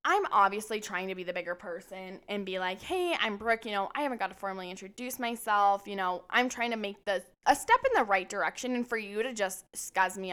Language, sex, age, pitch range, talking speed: English, female, 10-29, 180-230 Hz, 250 wpm